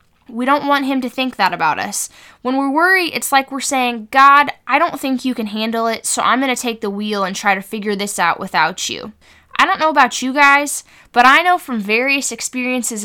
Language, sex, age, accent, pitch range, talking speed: English, female, 10-29, American, 200-270 Hz, 235 wpm